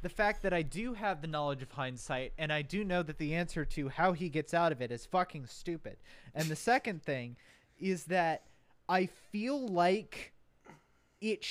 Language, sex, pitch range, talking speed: English, male, 140-180 Hz, 195 wpm